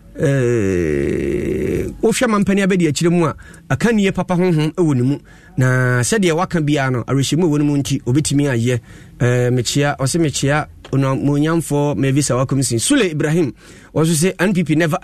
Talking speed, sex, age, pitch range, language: 170 wpm, male, 30-49, 145-185 Hz, English